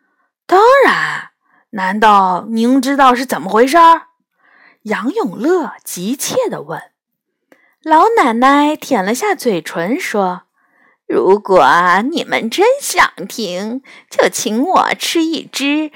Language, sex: Chinese, female